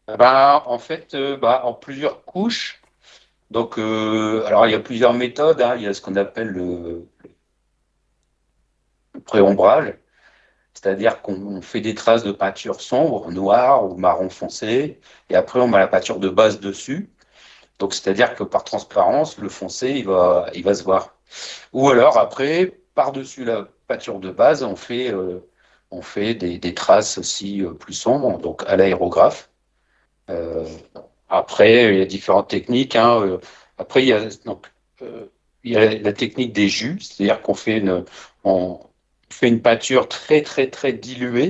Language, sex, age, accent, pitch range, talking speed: French, male, 50-69, French, 95-125 Hz, 165 wpm